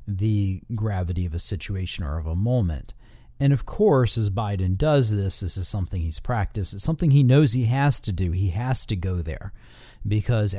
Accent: American